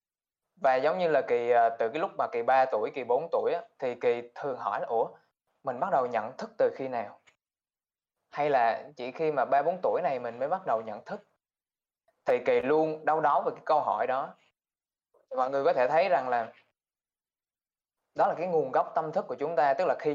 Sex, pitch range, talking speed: male, 125-175 Hz, 215 wpm